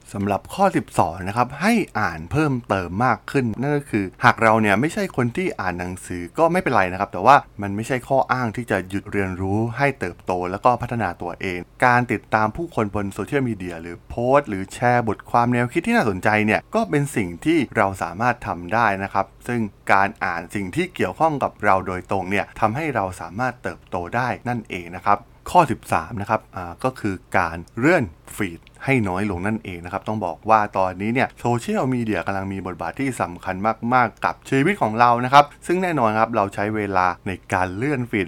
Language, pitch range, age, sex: Thai, 95-125 Hz, 20-39, male